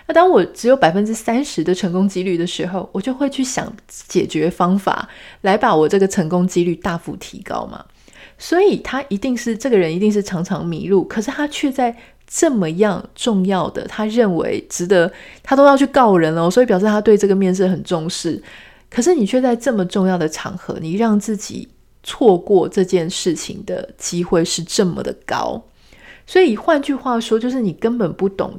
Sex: female